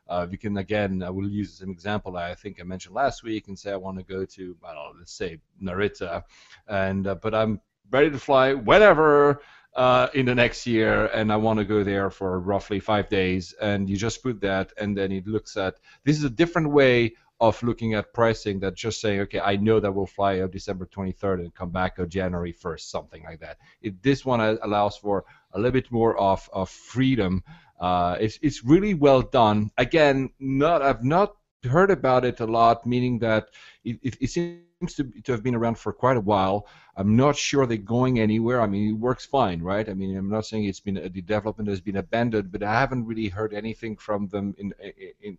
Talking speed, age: 225 wpm, 30-49